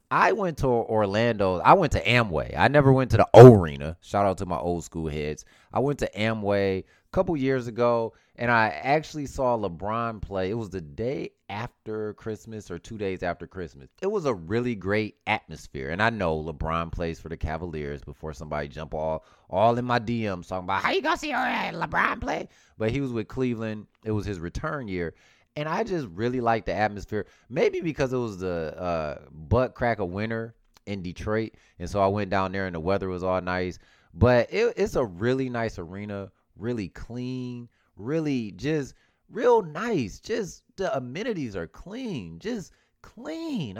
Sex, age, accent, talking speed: male, 20-39, American, 190 wpm